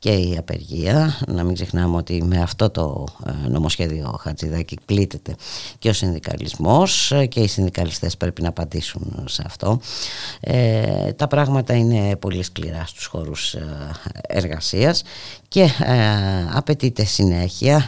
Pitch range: 90-145 Hz